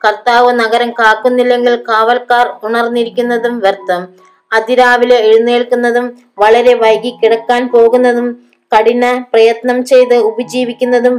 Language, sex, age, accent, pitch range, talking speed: Malayalam, female, 20-39, native, 215-245 Hz, 85 wpm